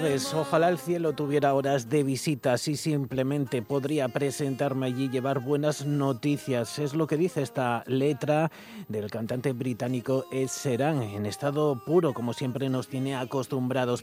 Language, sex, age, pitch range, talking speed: Spanish, male, 30-49, 125-150 Hz, 145 wpm